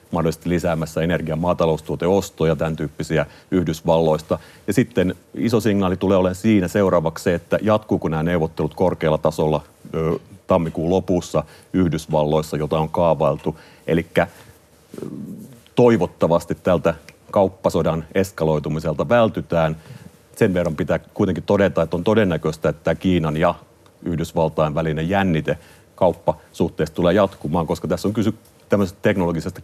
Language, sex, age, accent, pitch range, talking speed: Finnish, male, 40-59, native, 80-95 Hz, 115 wpm